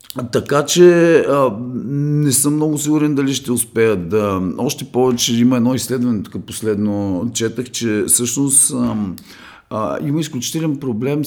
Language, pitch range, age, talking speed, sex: Bulgarian, 90-125 Hz, 40-59, 140 wpm, male